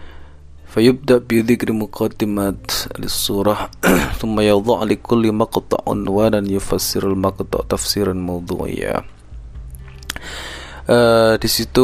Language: Indonesian